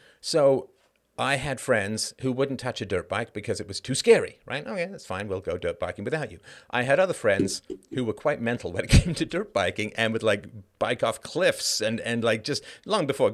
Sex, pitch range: male, 100-135 Hz